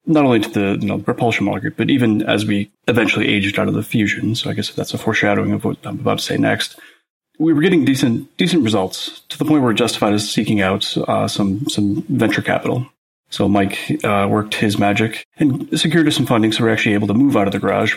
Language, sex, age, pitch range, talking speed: English, male, 30-49, 100-115 Hz, 250 wpm